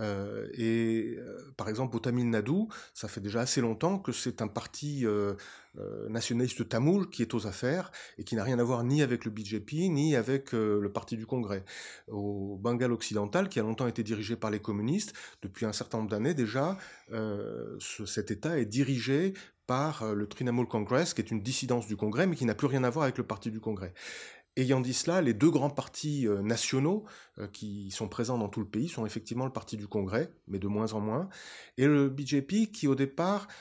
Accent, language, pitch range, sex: French, French, 110-145 Hz, male